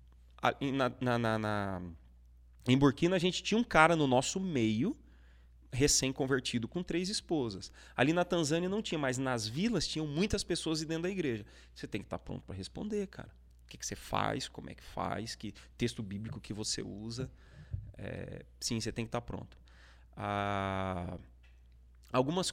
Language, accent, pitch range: Portuguese, Brazilian, 80-135 Hz